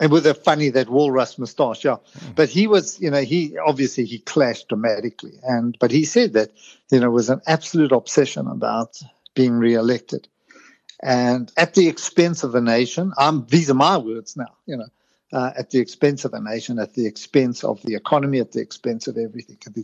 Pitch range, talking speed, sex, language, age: 120-160 Hz, 205 wpm, male, English, 50-69